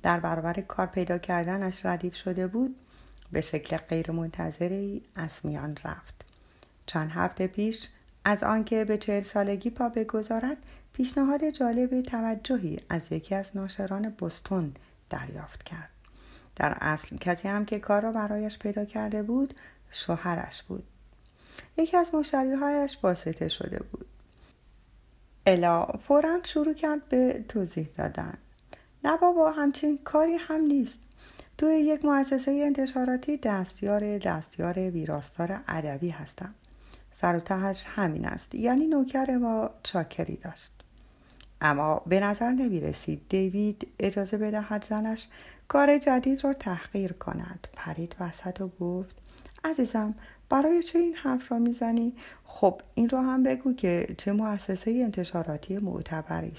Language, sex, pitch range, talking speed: Persian, female, 185-260 Hz, 125 wpm